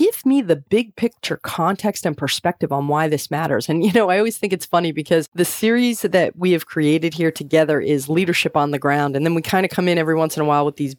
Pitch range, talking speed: 145-180 Hz, 260 wpm